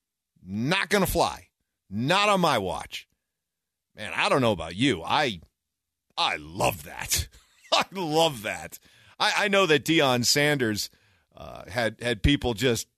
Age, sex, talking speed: 50-69, male, 145 wpm